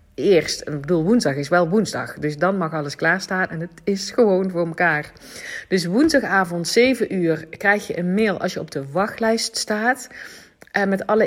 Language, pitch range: Dutch, 165-220 Hz